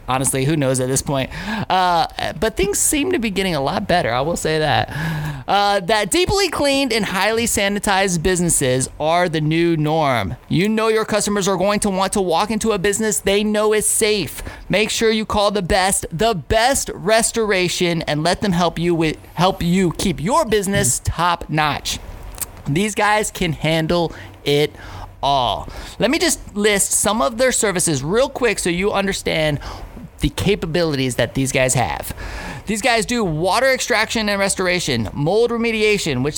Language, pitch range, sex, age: English, 155-215 Hz, male, 20-39